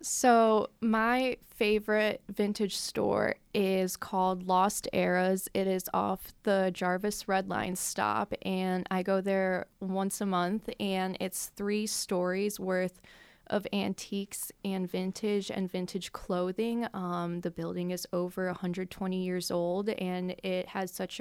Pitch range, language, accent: 180-200 Hz, English, American